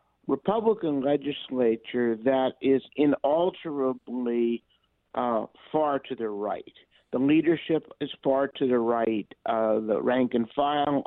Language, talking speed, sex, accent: English, 120 wpm, male, American